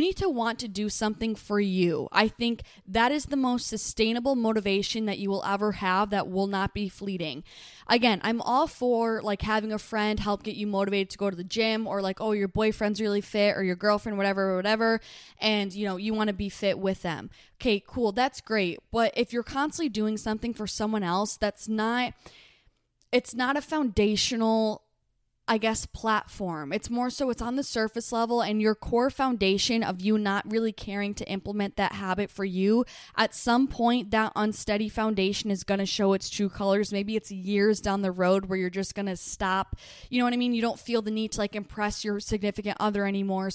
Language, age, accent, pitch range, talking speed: English, 10-29, American, 195-225 Hz, 210 wpm